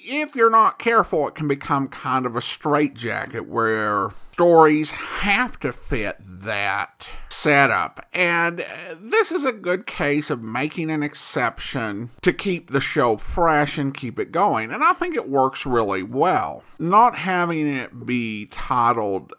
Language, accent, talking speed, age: English, American, 155 wpm, 50-69